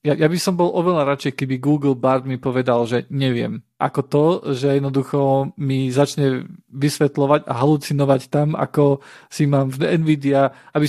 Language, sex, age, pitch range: Slovak, male, 40-59, 130-150 Hz